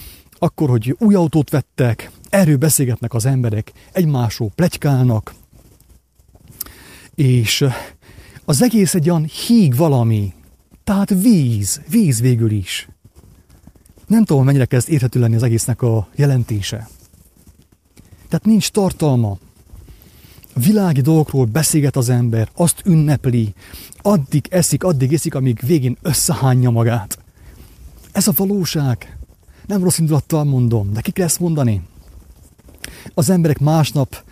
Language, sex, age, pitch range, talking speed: English, male, 30-49, 100-145 Hz, 115 wpm